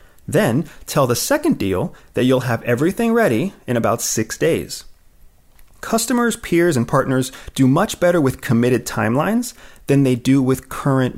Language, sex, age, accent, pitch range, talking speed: English, male, 30-49, American, 125-175 Hz, 155 wpm